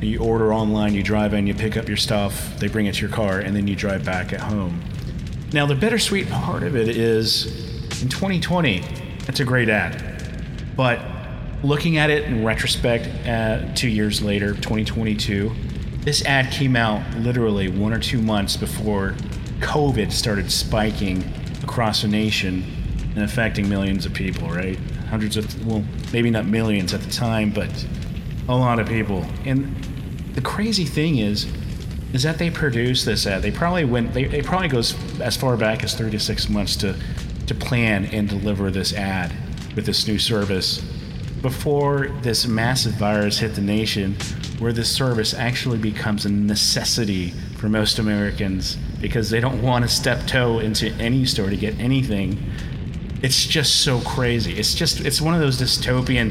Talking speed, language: 170 wpm, English